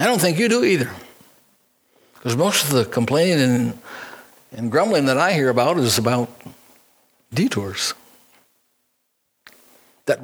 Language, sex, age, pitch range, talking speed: English, male, 60-79, 125-205 Hz, 130 wpm